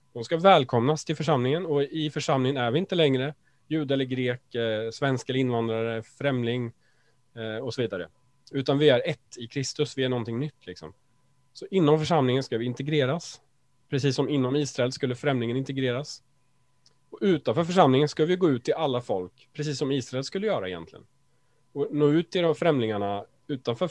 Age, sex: 30-49, male